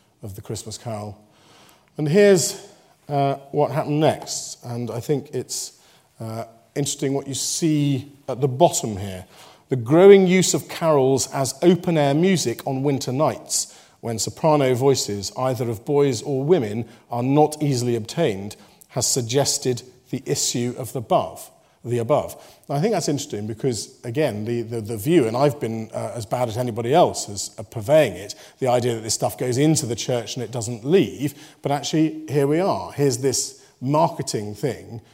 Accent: British